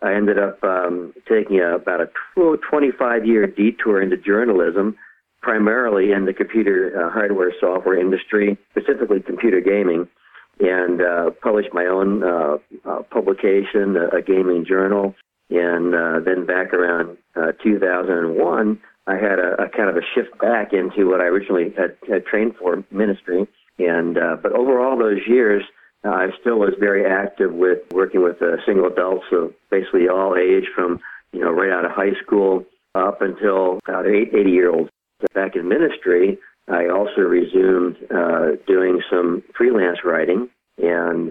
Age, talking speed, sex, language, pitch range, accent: 50-69, 155 wpm, male, English, 90-105 Hz, American